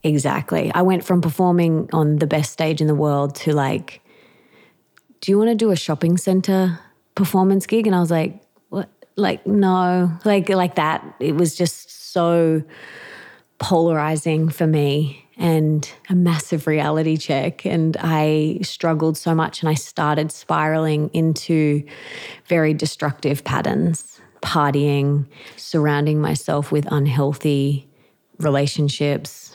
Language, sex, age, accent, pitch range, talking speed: English, female, 30-49, Australian, 150-170 Hz, 130 wpm